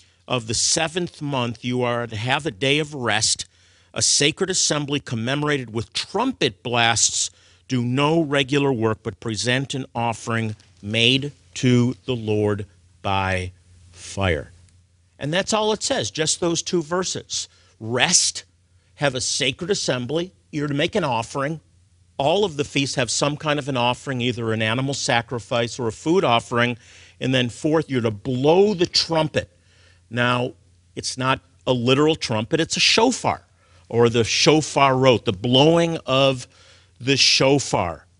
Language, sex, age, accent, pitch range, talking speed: English, male, 50-69, American, 100-145 Hz, 150 wpm